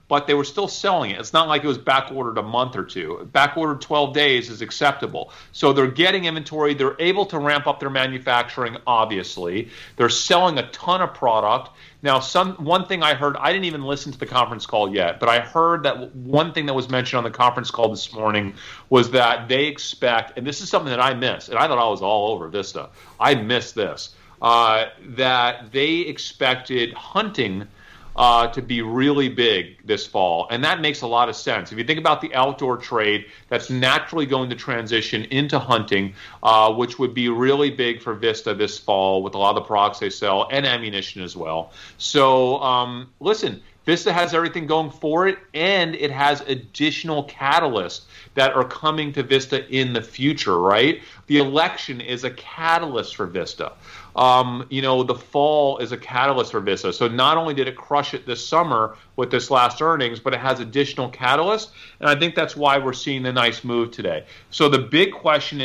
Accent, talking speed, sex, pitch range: American, 200 wpm, male, 120-150 Hz